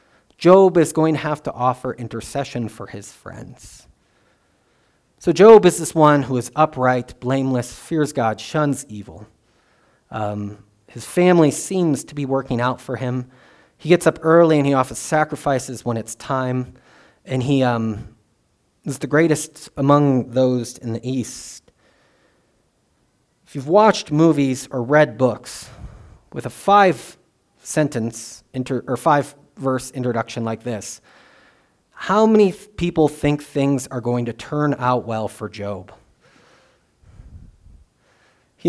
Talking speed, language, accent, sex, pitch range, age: 135 wpm, English, American, male, 120-155 Hz, 30-49